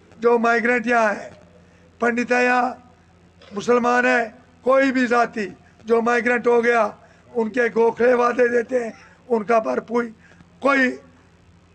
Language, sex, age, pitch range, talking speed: Urdu, male, 50-69, 215-235 Hz, 125 wpm